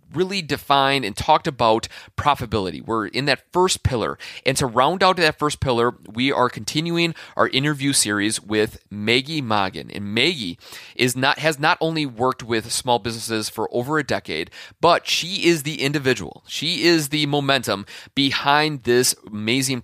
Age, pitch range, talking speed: 30-49, 115-155 Hz, 165 wpm